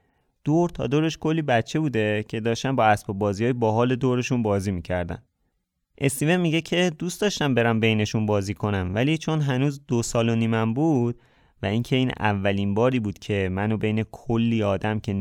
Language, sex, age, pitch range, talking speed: Persian, male, 30-49, 105-140 Hz, 180 wpm